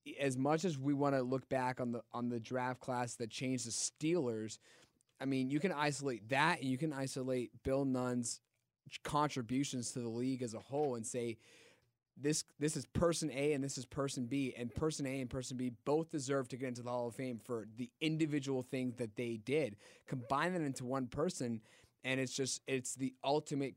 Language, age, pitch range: English, 20-39, 120-140 Hz